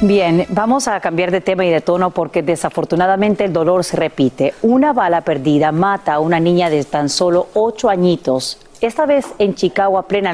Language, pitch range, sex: Spanish, 155-200 Hz, female